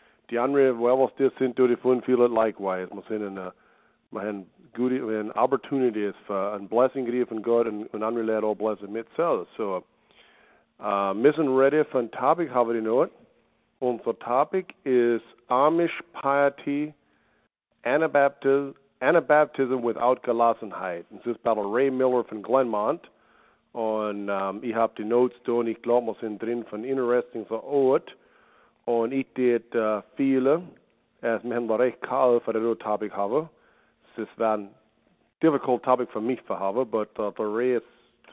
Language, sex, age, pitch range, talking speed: English, male, 50-69, 110-130 Hz, 135 wpm